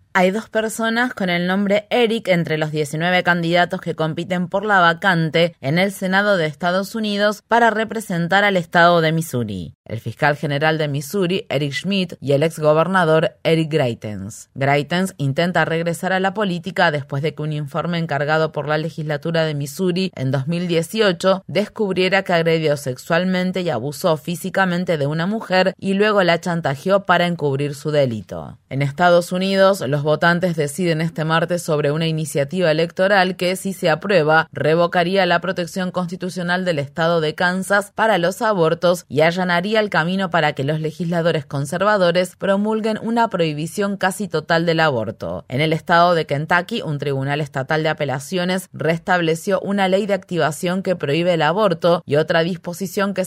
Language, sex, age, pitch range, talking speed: Spanish, female, 20-39, 155-190 Hz, 160 wpm